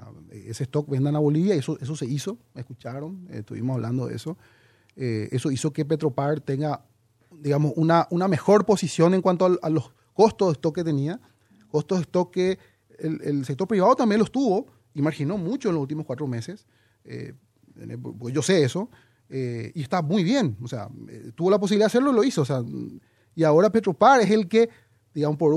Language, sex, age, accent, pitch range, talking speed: Spanish, male, 30-49, Venezuelan, 130-185 Hz, 200 wpm